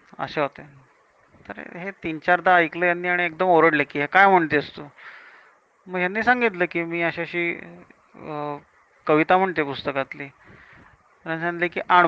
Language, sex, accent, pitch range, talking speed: Marathi, male, native, 145-175 Hz, 130 wpm